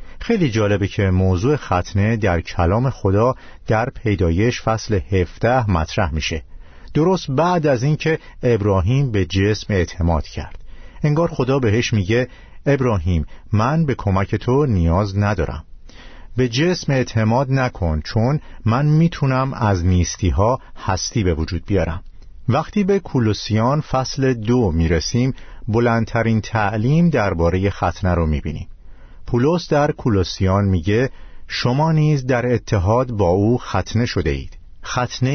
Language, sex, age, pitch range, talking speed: Persian, male, 50-69, 90-125 Hz, 125 wpm